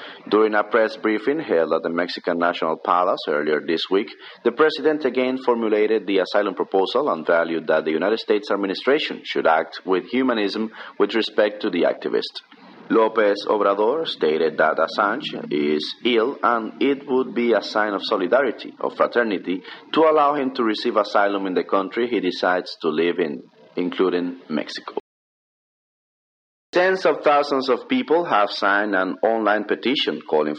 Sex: male